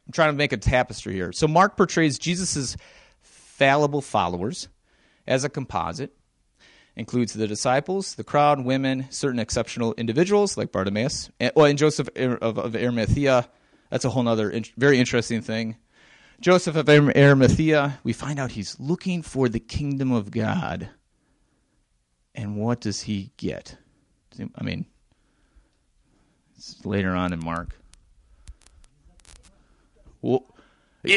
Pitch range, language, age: 100-140 Hz, English, 30-49